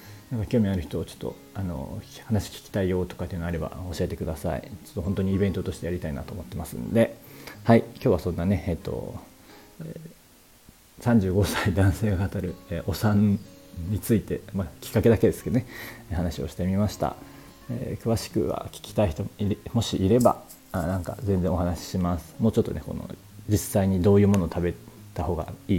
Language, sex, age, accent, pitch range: Japanese, male, 40-59, native, 90-105 Hz